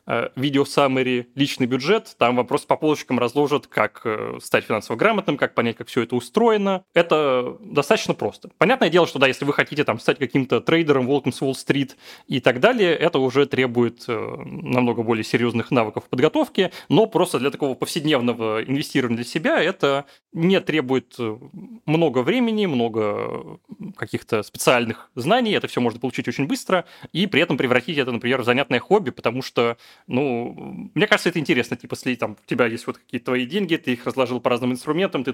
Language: Russian